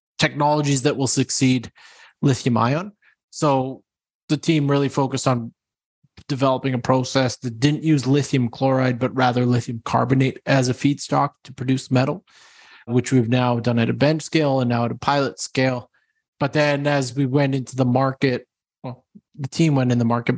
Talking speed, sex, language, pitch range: 175 wpm, male, English, 120-140 Hz